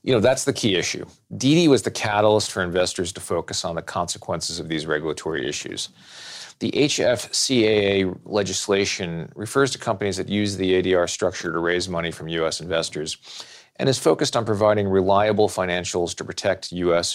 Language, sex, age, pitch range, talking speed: English, male, 40-59, 90-110 Hz, 170 wpm